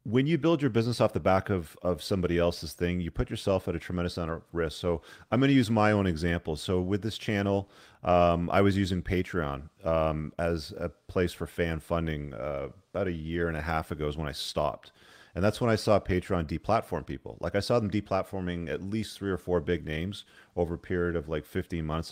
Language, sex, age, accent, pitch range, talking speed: English, male, 40-59, American, 80-100 Hz, 230 wpm